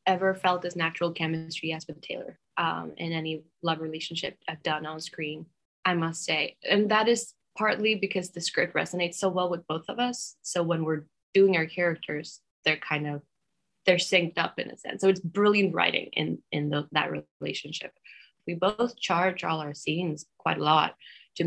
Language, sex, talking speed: English, female, 190 wpm